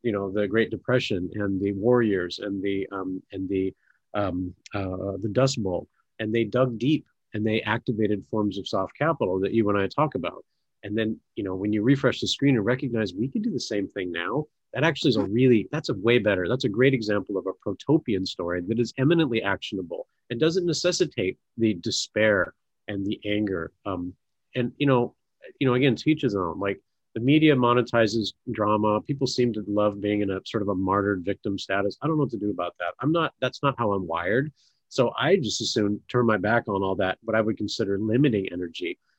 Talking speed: 215 wpm